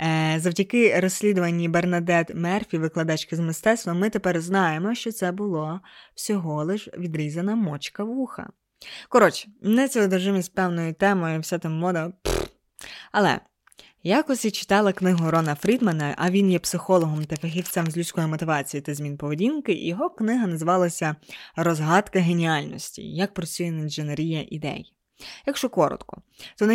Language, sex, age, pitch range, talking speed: Ukrainian, female, 20-39, 165-205 Hz, 135 wpm